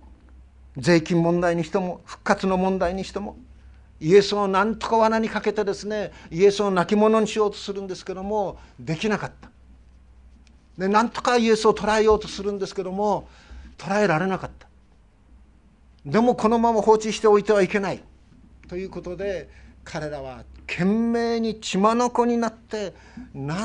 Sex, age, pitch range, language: male, 50-69, 150-205 Hz, Japanese